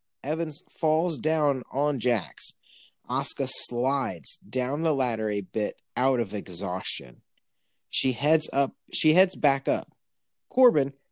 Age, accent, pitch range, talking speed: 30-49, American, 125-180 Hz, 125 wpm